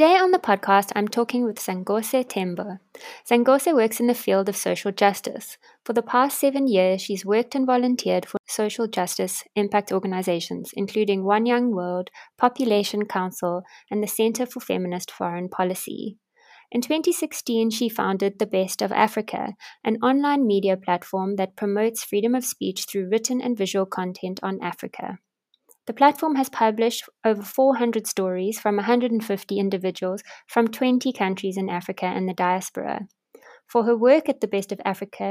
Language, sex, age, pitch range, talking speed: English, female, 20-39, 190-245 Hz, 160 wpm